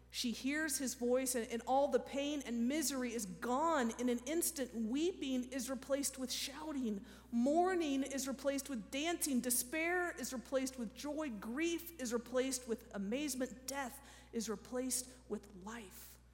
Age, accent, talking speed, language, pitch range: 40-59, American, 150 wpm, English, 205-270 Hz